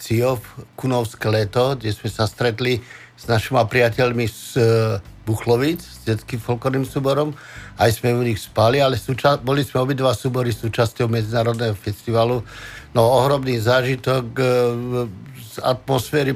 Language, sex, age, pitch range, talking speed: Slovak, male, 50-69, 110-130 Hz, 135 wpm